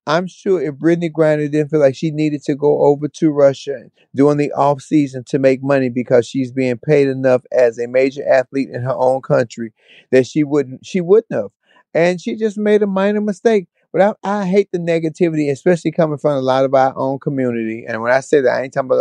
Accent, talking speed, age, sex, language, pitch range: American, 220 wpm, 30-49, male, English, 135-185 Hz